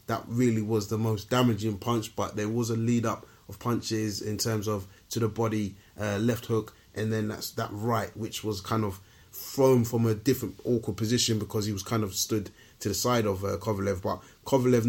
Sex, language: male, English